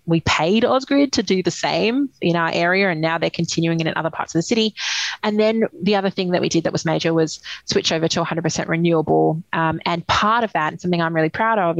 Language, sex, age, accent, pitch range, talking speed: English, female, 20-39, Australian, 160-190 Hz, 250 wpm